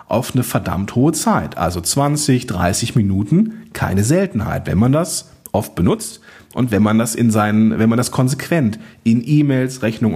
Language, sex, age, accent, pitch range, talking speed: German, male, 40-59, German, 110-145 Hz, 170 wpm